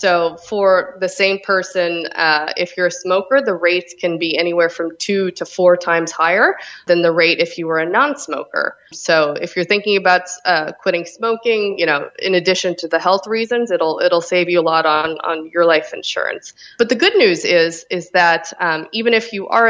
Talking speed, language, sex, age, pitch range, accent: 205 wpm, English, female, 20-39, 165-190 Hz, American